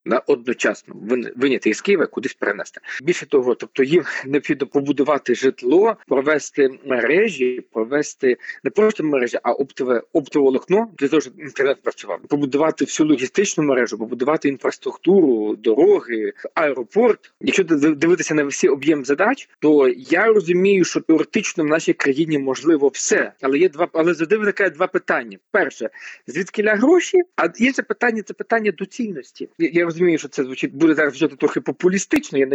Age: 40-59